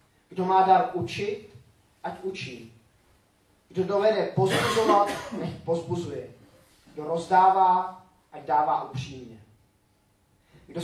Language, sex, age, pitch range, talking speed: Czech, male, 30-49, 125-180 Hz, 95 wpm